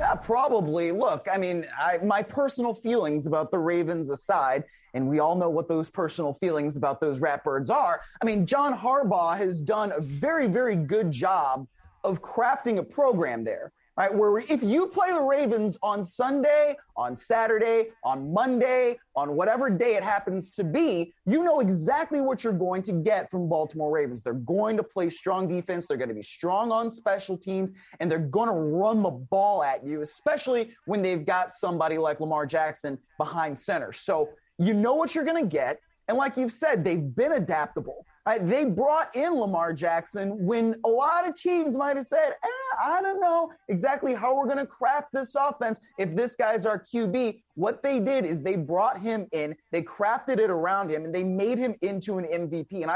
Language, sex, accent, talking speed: English, male, American, 195 wpm